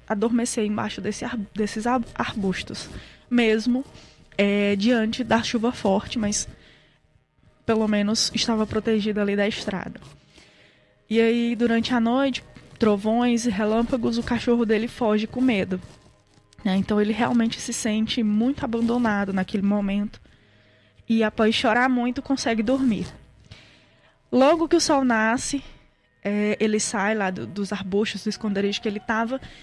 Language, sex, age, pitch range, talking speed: Portuguese, female, 20-39, 205-240 Hz, 130 wpm